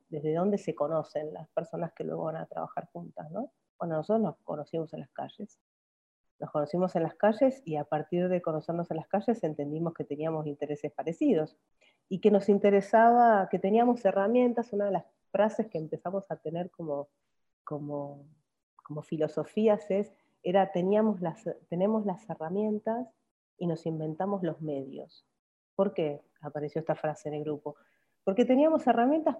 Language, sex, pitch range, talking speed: Spanish, female, 150-195 Hz, 160 wpm